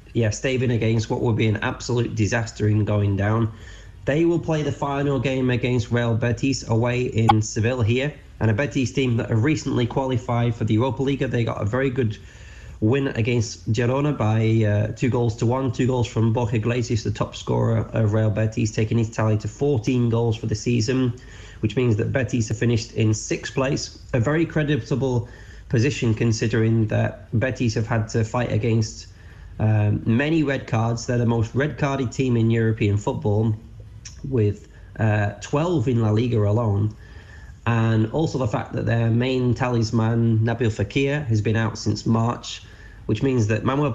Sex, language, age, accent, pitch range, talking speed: male, English, 20-39, British, 110-125 Hz, 180 wpm